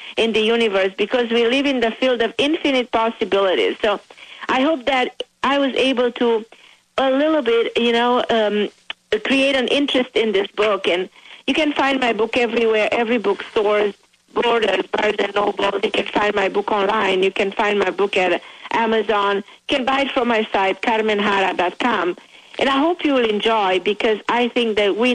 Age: 50-69